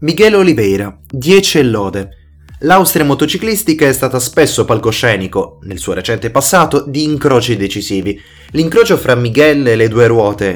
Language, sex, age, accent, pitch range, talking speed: Italian, male, 20-39, native, 100-145 Hz, 140 wpm